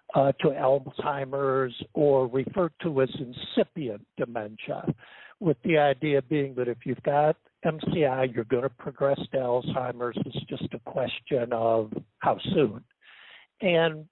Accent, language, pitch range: American, English, 120-145 Hz